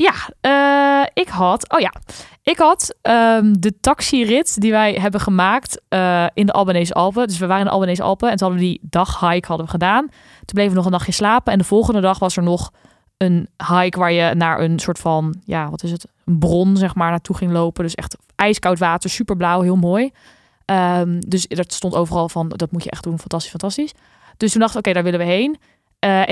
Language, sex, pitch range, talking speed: Dutch, female, 180-220 Hz, 225 wpm